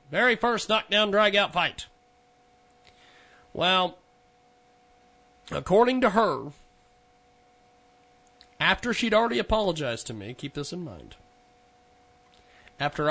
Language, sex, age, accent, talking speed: English, male, 40-59, American, 95 wpm